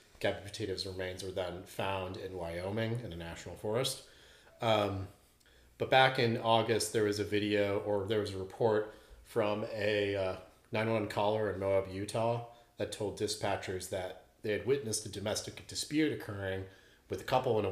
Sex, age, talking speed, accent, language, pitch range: male, 30-49, 170 wpm, American, English, 95-110 Hz